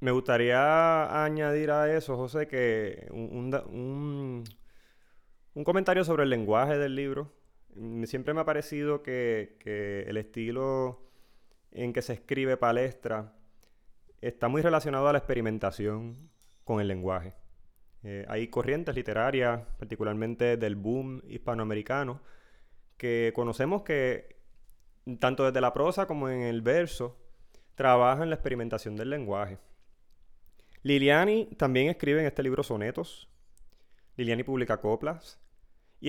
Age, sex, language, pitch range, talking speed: 20-39, male, English, 110-140 Hz, 120 wpm